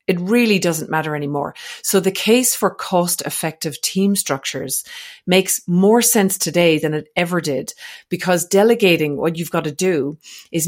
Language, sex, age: English, female, 40-59